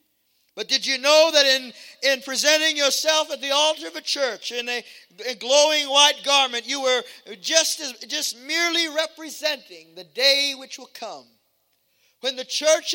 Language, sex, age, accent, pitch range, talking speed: English, male, 50-69, American, 255-300 Hz, 160 wpm